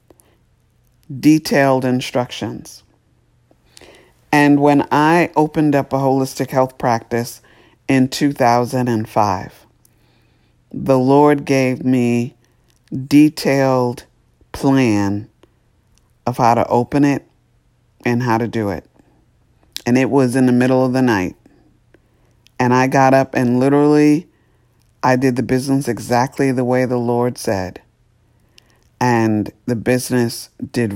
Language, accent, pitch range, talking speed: English, American, 115-130 Hz, 110 wpm